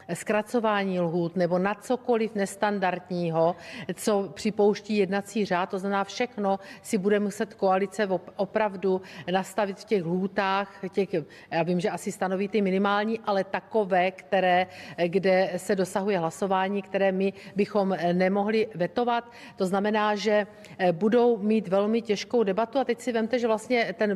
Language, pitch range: Czech, 185-225 Hz